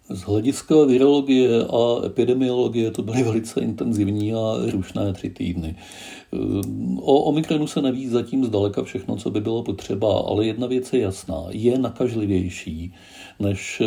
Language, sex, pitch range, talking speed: Czech, male, 95-125 Hz, 140 wpm